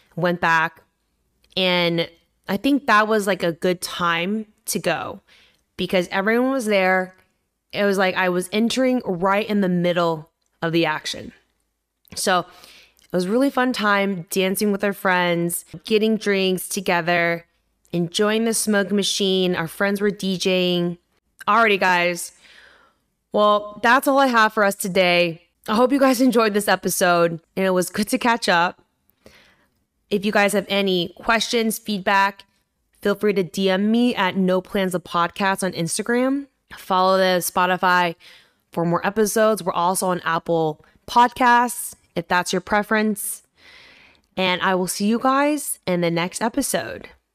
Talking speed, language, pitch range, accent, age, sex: 150 wpm, English, 175-215 Hz, American, 20-39, female